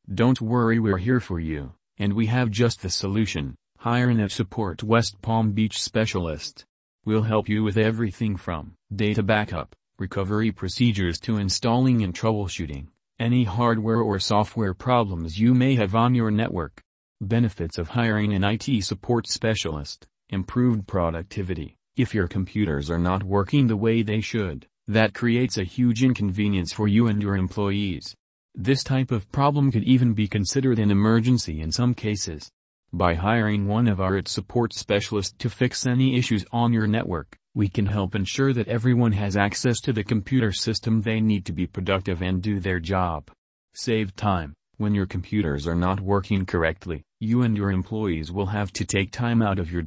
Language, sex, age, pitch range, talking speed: English, male, 40-59, 95-115 Hz, 170 wpm